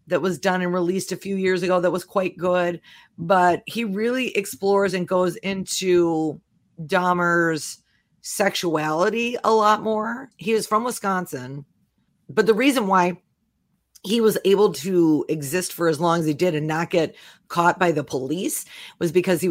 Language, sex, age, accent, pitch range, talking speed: English, female, 40-59, American, 165-195 Hz, 165 wpm